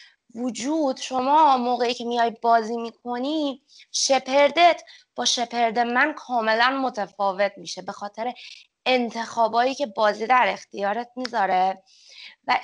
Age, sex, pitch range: 20-39, female, 225-285 Hz